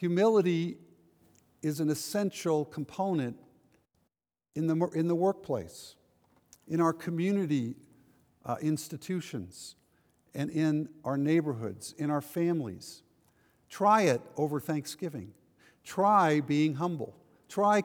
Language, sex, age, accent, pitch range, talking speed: English, male, 50-69, American, 140-180 Hz, 100 wpm